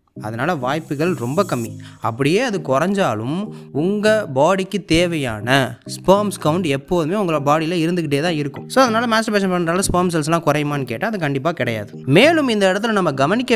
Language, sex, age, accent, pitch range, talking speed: Tamil, male, 20-39, native, 125-180 Hz, 150 wpm